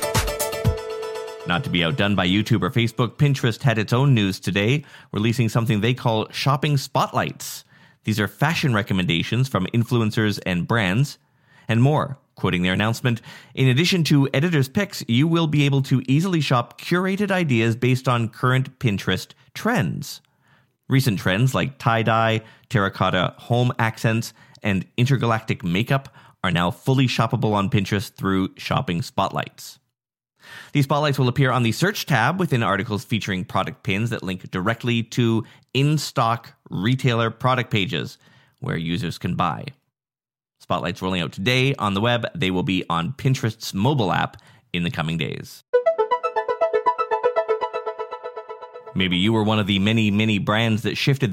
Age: 30-49